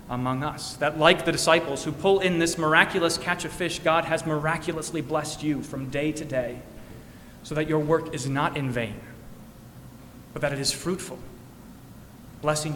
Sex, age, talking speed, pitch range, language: male, 30-49, 175 wpm, 125-160 Hz, English